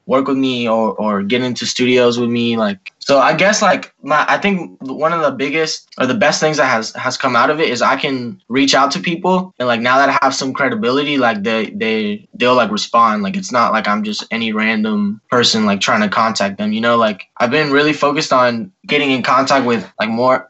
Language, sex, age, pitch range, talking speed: English, male, 10-29, 120-190 Hz, 240 wpm